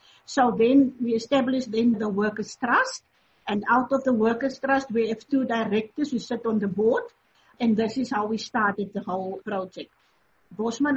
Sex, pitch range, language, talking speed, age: female, 225-260 Hz, English, 180 wpm, 50-69